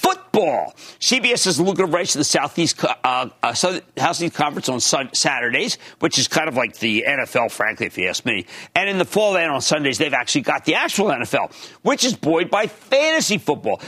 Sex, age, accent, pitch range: male, 50-69, American, 155-240 Hz